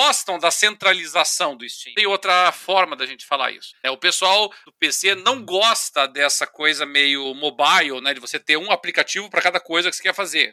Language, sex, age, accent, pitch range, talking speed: Portuguese, male, 40-59, Brazilian, 160-230 Hz, 205 wpm